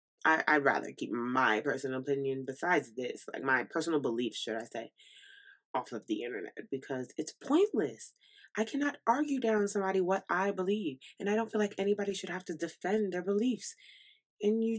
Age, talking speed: 20-39, 180 wpm